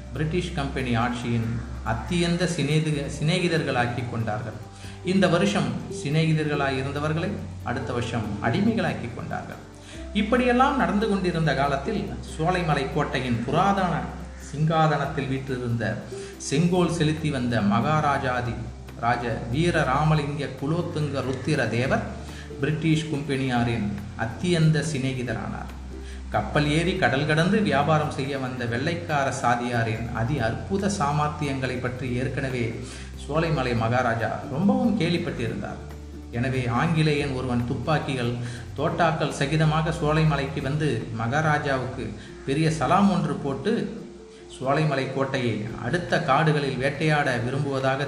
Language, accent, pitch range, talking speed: Tamil, native, 120-160 Hz, 90 wpm